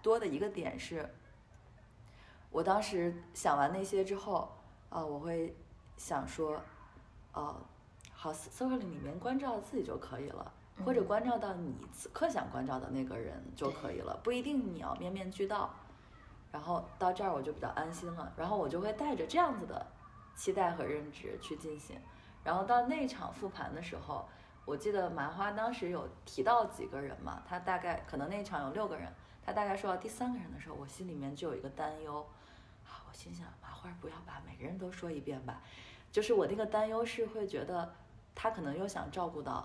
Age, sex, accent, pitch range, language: 20-39, female, native, 145-210 Hz, Chinese